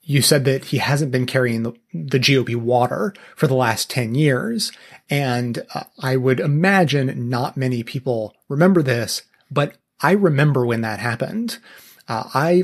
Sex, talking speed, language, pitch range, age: male, 160 wpm, English, 120-145 Hz, 30-49